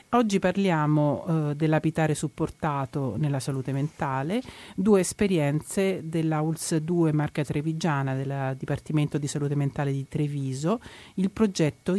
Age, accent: 40-59, native